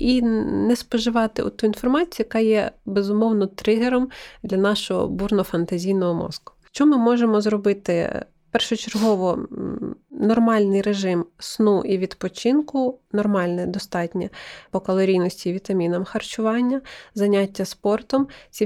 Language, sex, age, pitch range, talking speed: Ukrainian, female, 20-39, 185-225 Hz, 105 wpm